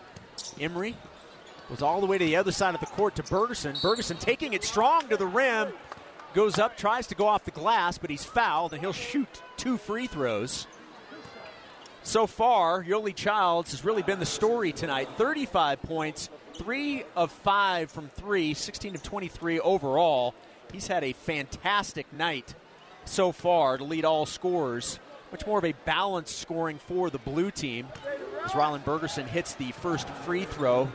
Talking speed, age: 170 wpm, 30-49